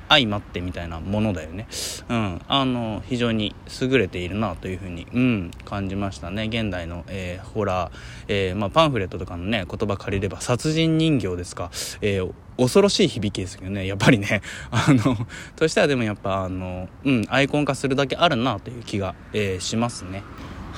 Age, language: 20-39, Japanese